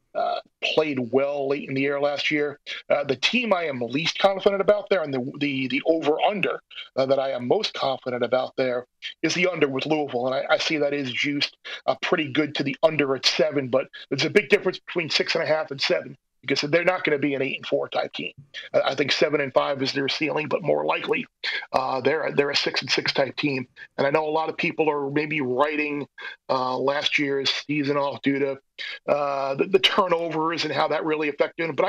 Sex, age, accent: male, 40-59, American